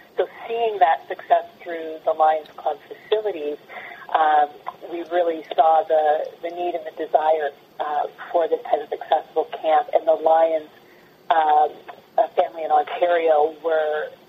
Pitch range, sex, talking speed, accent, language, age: 160-195 Hz, female, 145 wpm, American, English, 40-59